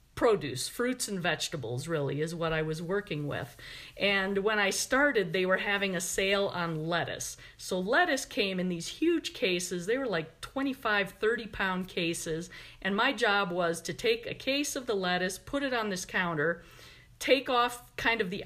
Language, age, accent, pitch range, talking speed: English, 50-69, American, 170-215 Hz, 180 wpm